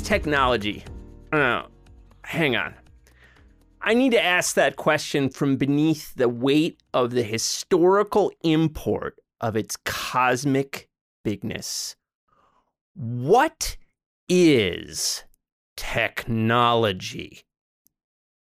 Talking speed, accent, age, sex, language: 80 wpm, American, 30-49, male, English